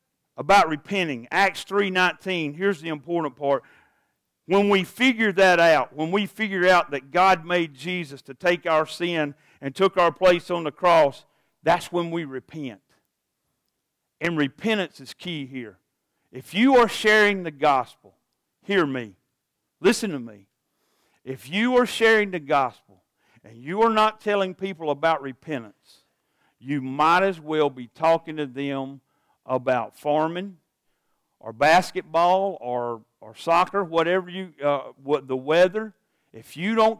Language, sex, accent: English, male, American